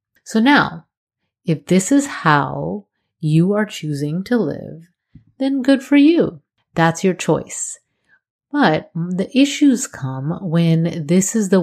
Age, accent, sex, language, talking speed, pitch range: 30-49, American, female, English, 135 wpm, 150-190 Hz